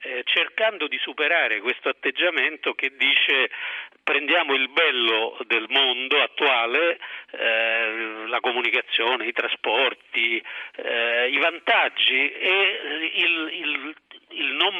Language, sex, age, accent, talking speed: Italian, male, 50-69, native, 105 wpm